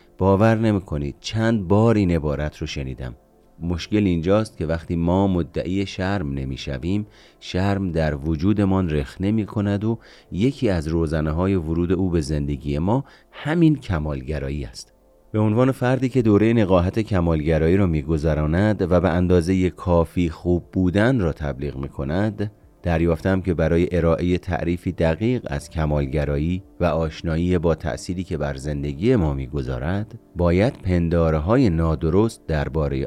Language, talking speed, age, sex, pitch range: Persian, 135 wpm, 30-49, male, 80-100 Hz